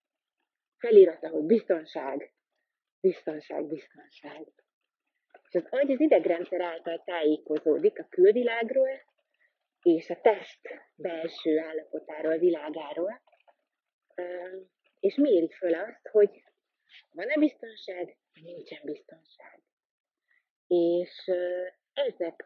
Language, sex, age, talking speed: Hungarian, female, 30-49, 80 wpm